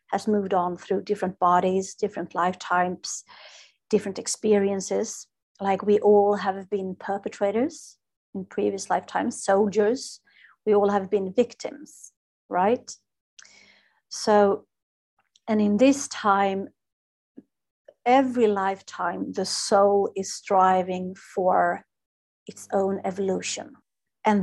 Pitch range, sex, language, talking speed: 190-215 Hz, female, English, 105 wpm